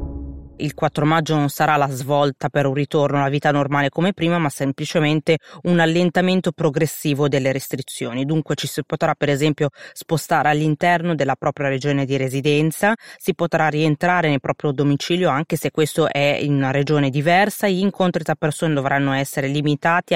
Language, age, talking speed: Italian, 20-39, 165 wpm